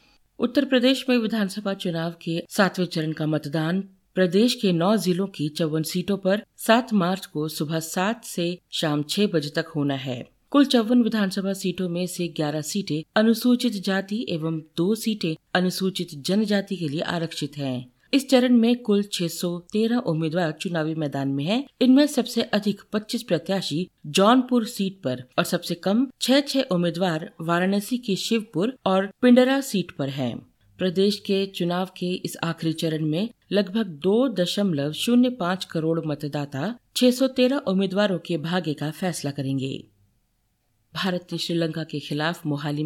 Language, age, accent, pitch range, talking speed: Hindi, 50-69, native, 155-210 Hz, 150 wpm